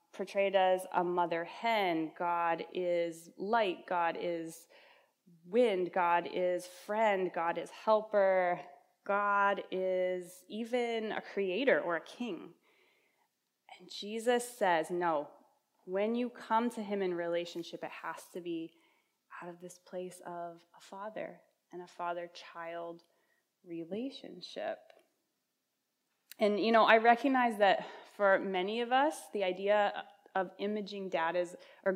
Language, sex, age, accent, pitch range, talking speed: English, female, 20-39, American, 175-220 Hz, 130 wpm